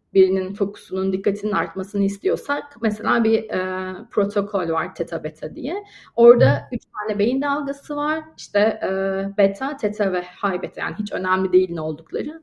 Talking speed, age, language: 135 wpm, 30-49, Turkish